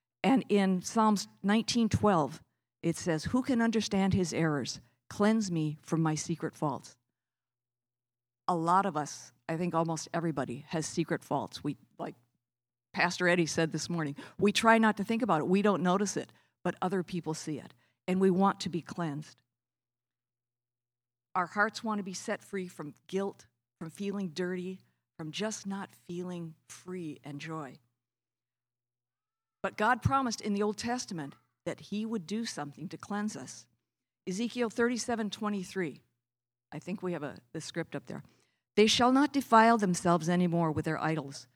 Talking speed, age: 160 wpm, 50-69